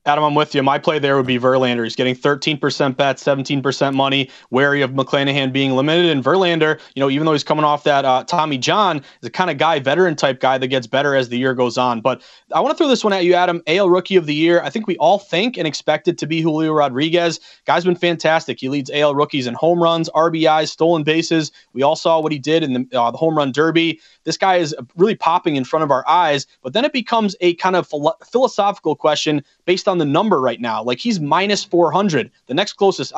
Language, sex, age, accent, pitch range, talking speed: English, male, 30-49, American, 145-175 Hz, 245 wpm